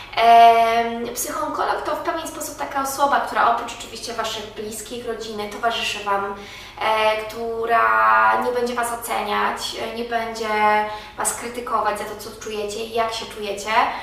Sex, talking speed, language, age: female, 140 wpm, Polish, 20-39